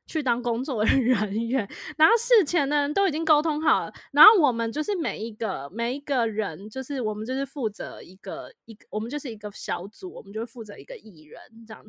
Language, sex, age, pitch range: Chinese, female, 20-39, 225-300 Hz